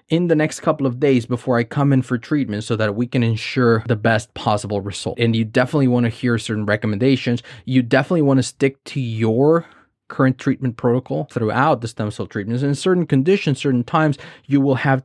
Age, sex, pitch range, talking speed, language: 20-39, male, 110-140 Hz, 205 wpm, English